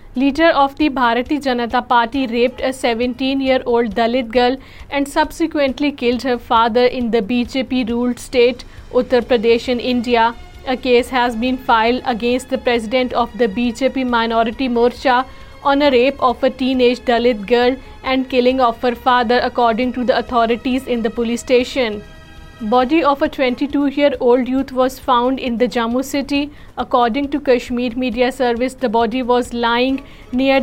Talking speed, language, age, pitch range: 155 wpm, Urdu, 40-59, 245-265 Hz